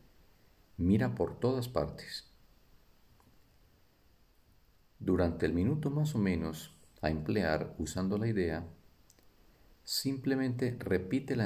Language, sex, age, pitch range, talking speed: Spanish, male, 50-69, 80-110 Hz, 90 wpm